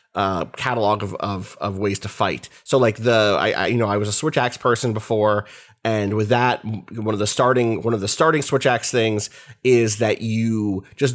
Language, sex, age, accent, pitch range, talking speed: English, male, 30-49, American, 105-130 Hz, 215 wpm